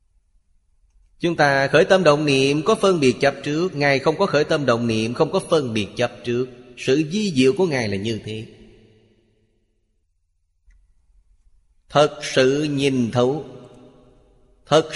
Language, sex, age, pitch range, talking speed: Vietnamese, male, 30-49, 110-145 Hz, 150 wpm